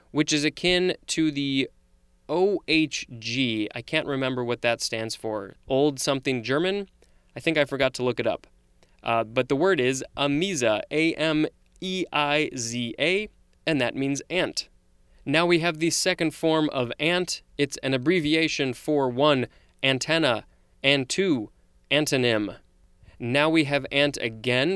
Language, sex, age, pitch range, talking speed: English, male, 20-39, 120-155 Hz, 140 wpm